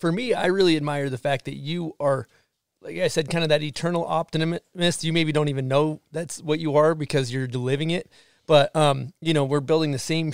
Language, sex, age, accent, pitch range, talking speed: English, male, 30-49, American, 150-180 Hz, 225 wpm